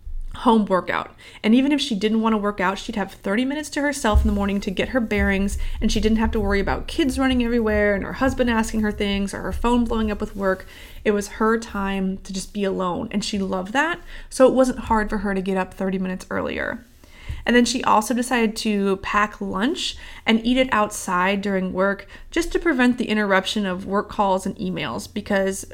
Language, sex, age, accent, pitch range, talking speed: English, female, 20-39, American, 190-230 Hz, 225 wpm